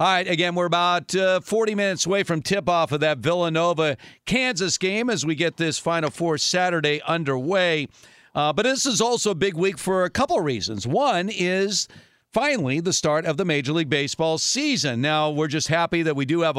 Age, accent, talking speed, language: 50-69, American, 200 wpm, English